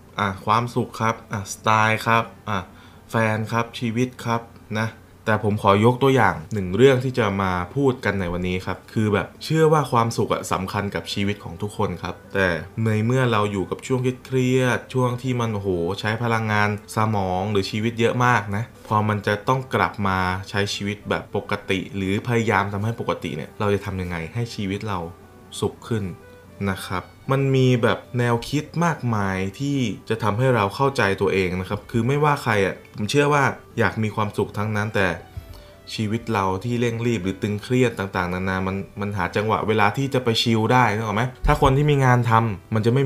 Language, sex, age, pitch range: Thai, male, 20-39, 95-120 Hz